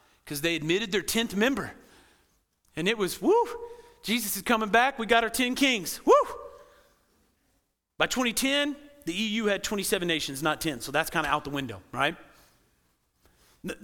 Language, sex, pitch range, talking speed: English, male, 165-230 Hz, 165 wpm